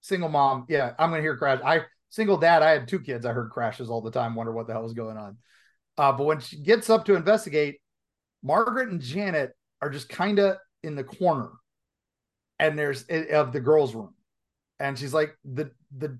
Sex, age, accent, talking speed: male, 40-59, American, 210 wpm